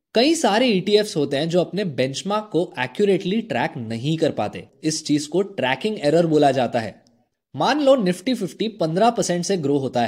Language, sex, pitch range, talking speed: Hindi, male, 150-225 Hz, 180 wpm